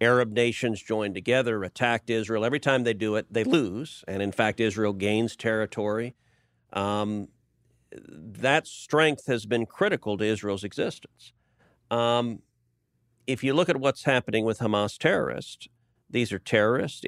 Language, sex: English, male